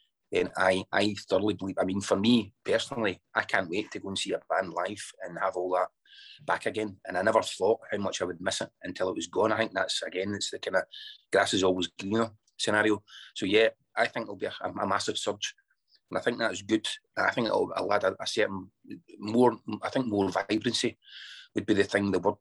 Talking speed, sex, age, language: 230 wpm, male, 30-49, English